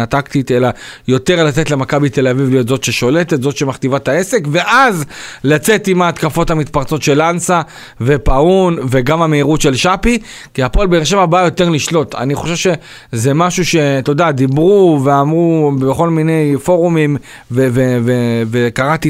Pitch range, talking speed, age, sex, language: 130-170 Hz, 140 wpm, 40-59, male, Hebrew